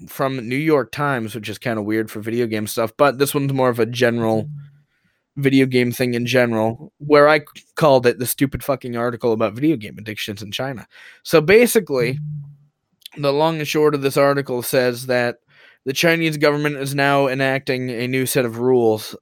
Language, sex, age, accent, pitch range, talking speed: English, male, 20-39, American, 115-140 Hz, 190 wpm